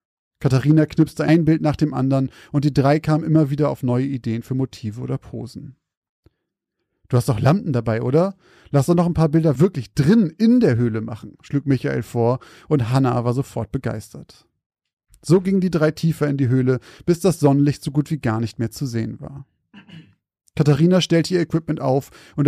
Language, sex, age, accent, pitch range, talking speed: German, male, 30-49, German, 120-155 Hz, 190 wpm